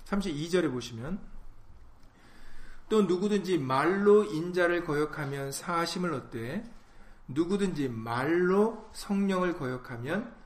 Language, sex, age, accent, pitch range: Korean, male, 40-59, native, 125-185 Hz